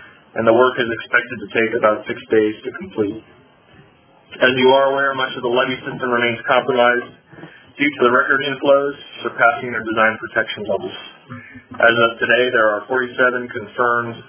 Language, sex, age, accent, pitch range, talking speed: English, male, 30-49, American, 115-140 Hz, 170 wpm